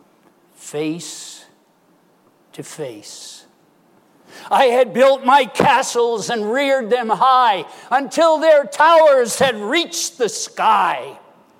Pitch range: 180-255 Hz